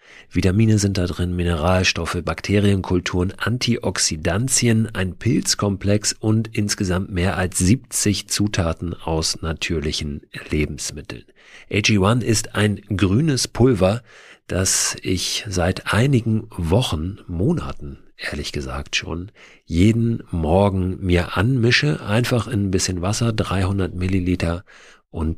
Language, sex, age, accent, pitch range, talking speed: German, male, 50-69, German, 90-110 Hz, 105 wpm